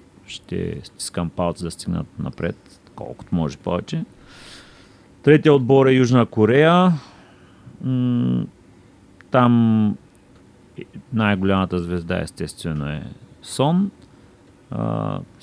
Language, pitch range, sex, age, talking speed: Bulgarian, 90-115 Hz, male, 30-49, 80 wpm